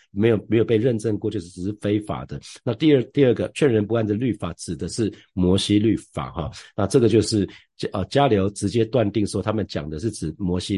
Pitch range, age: 90-110 Hz, 50-69